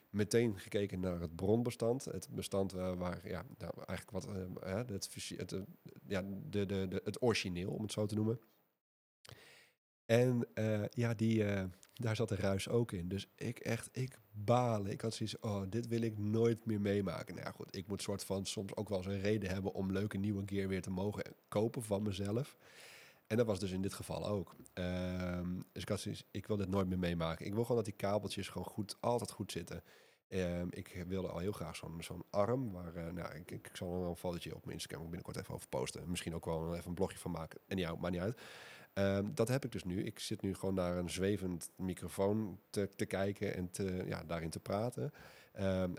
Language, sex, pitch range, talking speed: Dutch, male, 90-110 Hz, 220 wpm